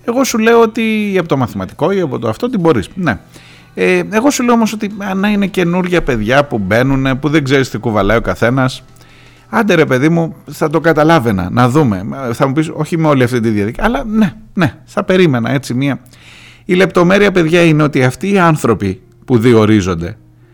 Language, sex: Greek, male